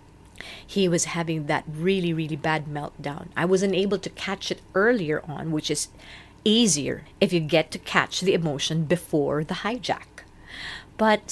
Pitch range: 175-275 Hz